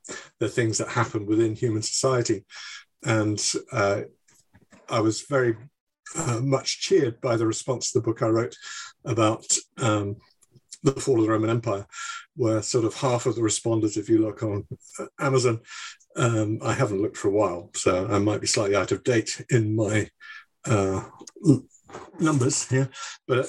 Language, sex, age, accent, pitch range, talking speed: English, male, 50-69, British, 110-135 Hz, 165 wpm